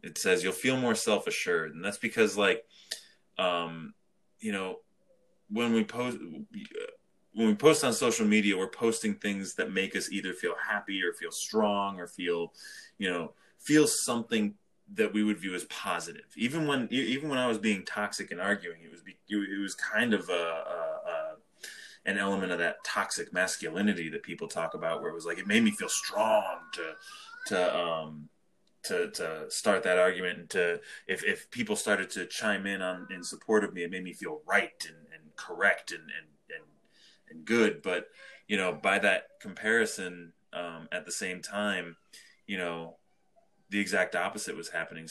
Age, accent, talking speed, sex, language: 20-39, American, 185 wpm, male, English